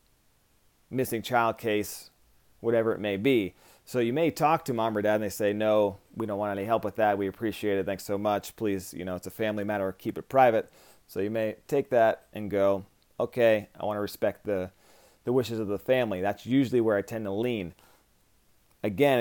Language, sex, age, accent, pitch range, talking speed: English, male, 30-49, American, 100-120 Hz, 210 wpm